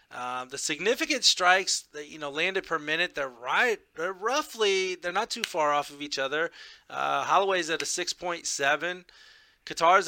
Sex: male